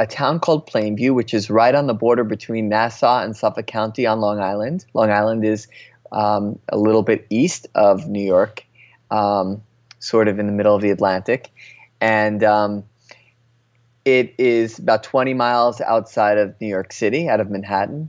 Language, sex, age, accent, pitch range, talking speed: English, male, 20-39, American, 110-130 Hz, 175 wpm